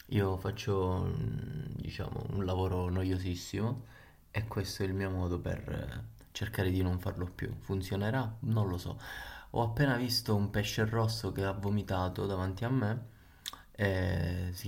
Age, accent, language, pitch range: 20-39, native, Italian, 95-110 Hz